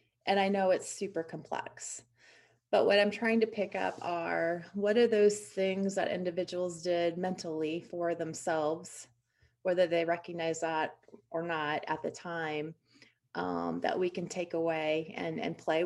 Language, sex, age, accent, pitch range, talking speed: English, female, 30-49, American, 165-200 Hz, 160 wpm